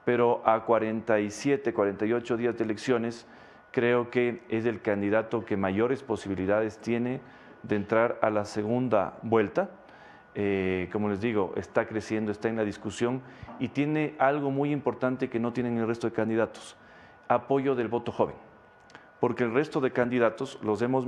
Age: 40-59